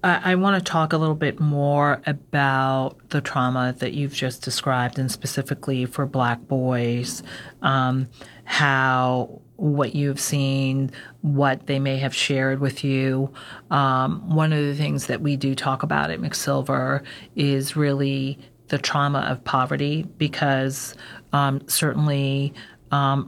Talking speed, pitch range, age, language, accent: 140 wpm, 130-140 Hz, 40-59, English, American